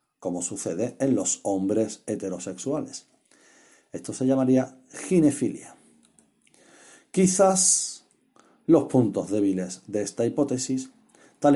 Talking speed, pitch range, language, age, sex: 95 wpm, 105-140 Hz, Spanish, 40-59, male